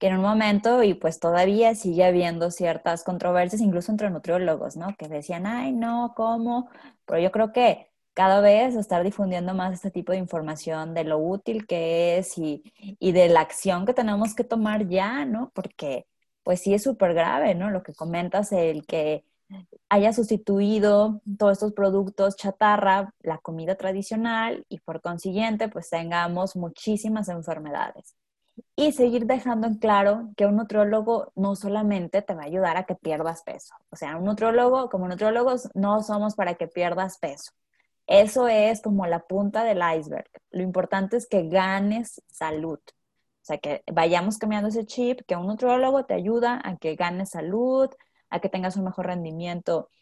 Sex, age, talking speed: female, 20-39, 170 wpm